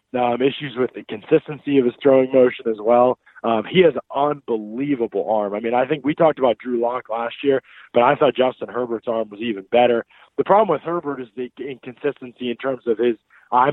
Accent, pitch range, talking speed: American, 120-145 Hz, 215 wpm